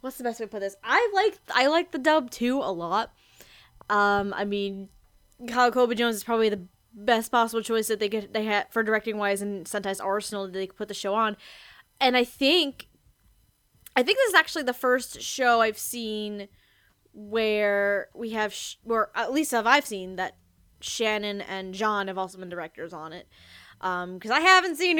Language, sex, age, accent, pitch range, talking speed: English, female, 10-29, American, 200-255 Hz, 200 wpm